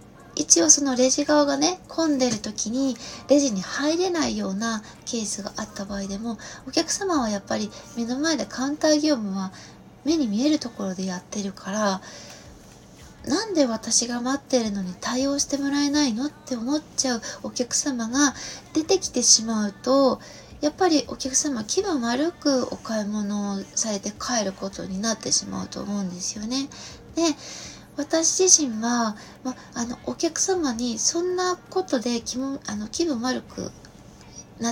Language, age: Japanese, 20-39